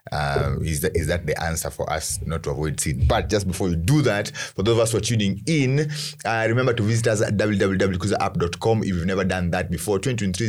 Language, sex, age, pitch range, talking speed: English, male, 30-49, 80-105 Hz, 235 wpm